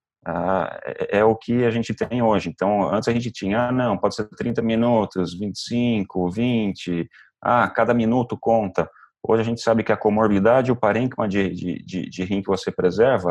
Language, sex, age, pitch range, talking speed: Portuguese, male, 30-49, 95-110 Hz, 195 wpm